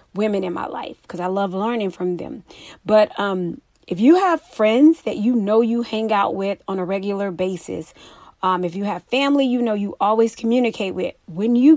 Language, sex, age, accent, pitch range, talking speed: English, female, 30-49, American, 200-260 Hz, 205 wpm